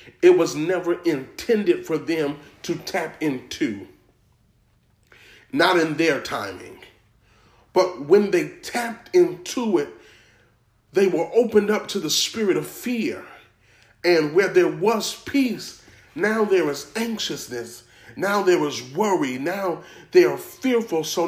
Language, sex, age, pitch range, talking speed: English, male, 40-59, 145-210 Hz, 130 wpm